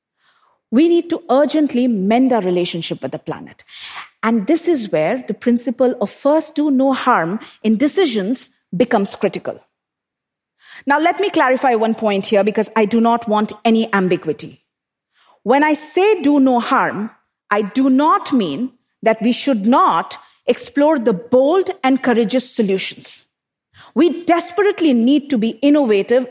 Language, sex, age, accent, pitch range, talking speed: English, female, 50-69, Indian, 220-305 Hz, 150 wpm